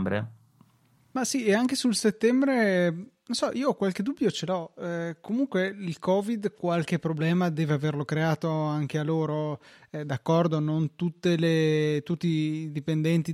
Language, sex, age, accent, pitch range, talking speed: Italian, male, 20-39, native, 155-185 Hz, 155 wpm